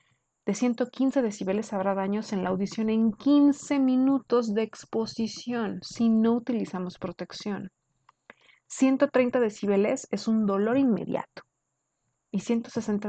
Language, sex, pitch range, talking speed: Spanish, female, 185-245 Hz, 115 wpm